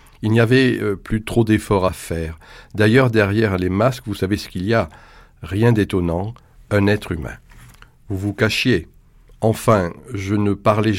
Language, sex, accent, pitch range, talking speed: French, male, French, 95-115 Hz, 165 wpm